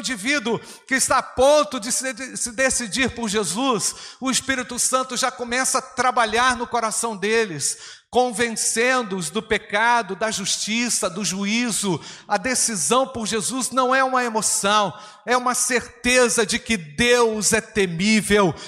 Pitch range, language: 195-235 Hz, Portuguese